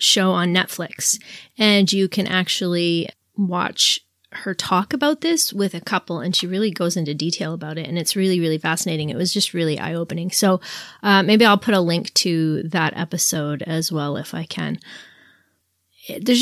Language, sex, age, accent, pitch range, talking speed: English, female, 20-39, American, 160-195 Hz, 180 wpm